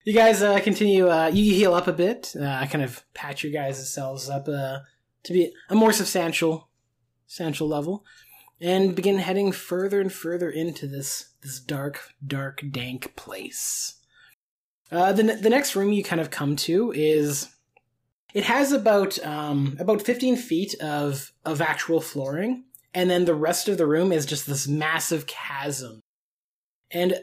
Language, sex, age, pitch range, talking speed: English, male, 20-39, 145-195 Hz, 165 wpm